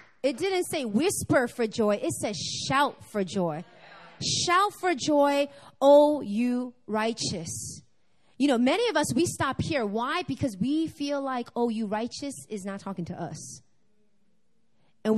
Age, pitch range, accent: 30-49, 195-280 Hz, American